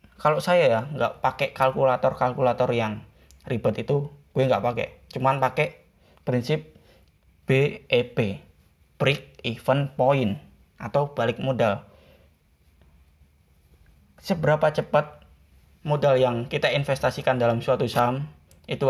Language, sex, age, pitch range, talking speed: Indonesian, male, 20-39, 100-150 Hz, 100 wpm